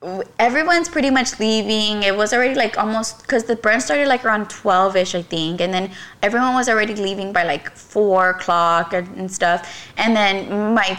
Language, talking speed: English, 185 wpm